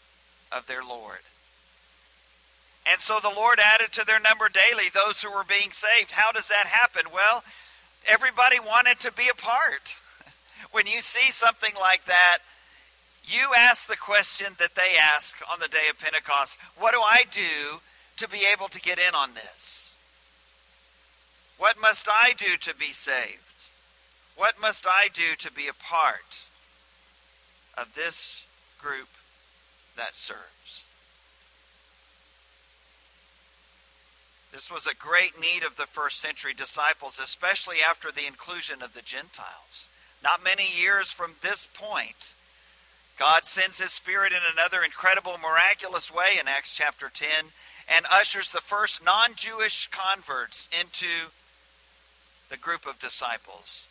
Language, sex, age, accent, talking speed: English, male, 50-69, American, 140 wpm